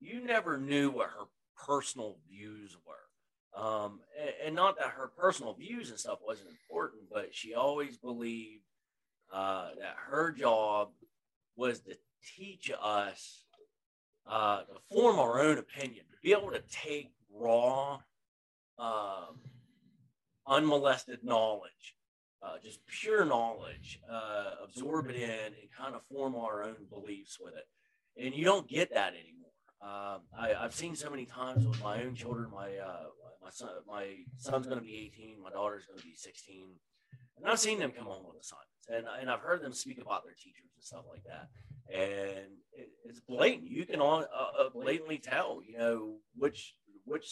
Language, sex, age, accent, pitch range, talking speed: English, male, 40-59, American, 110-150 Hz, 165 wpm